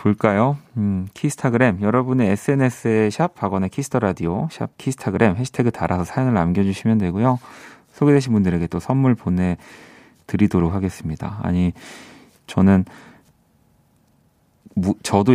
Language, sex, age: Korean, male, 30-49